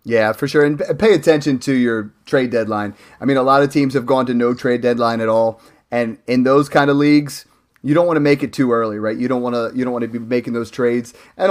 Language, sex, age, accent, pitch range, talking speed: English, male, 30-49, American, 120-145 Hz, 270 wpm